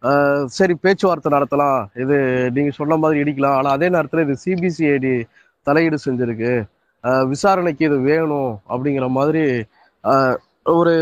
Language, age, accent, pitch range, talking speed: Tamil, 20-39, native, 130-170 Hz, 115 wpm